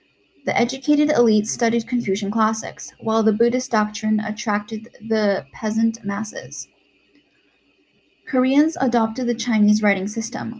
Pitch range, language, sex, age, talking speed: 210-245 Hz, English, female, 10-29, 115 wpm